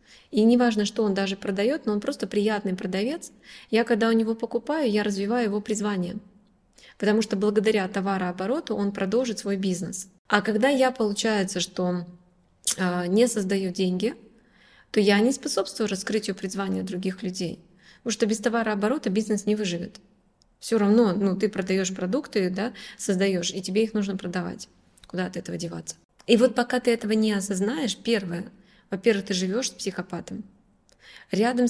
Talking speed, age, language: 155 wpm, 20-39, Russian